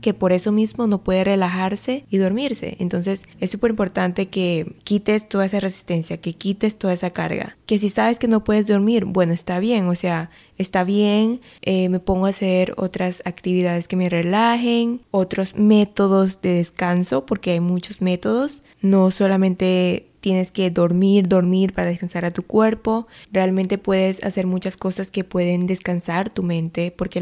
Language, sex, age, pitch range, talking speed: Spanish, female, 20-39, 180-215 Hz, 170 wpm